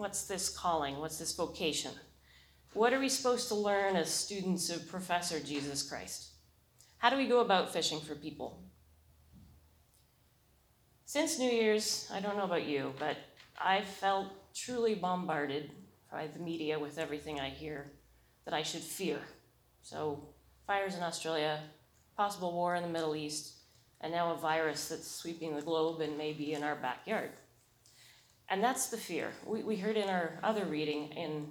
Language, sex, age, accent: English, female, 30-49, American